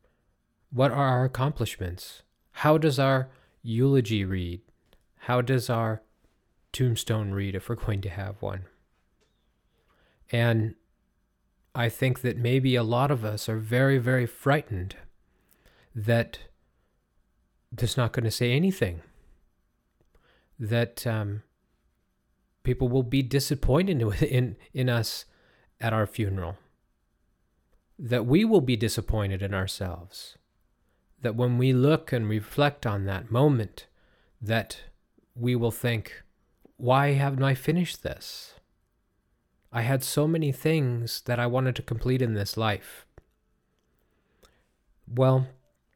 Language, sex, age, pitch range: English, male, 40-59, 105-130 Hz